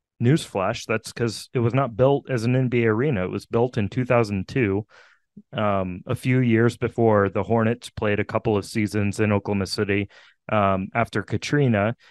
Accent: American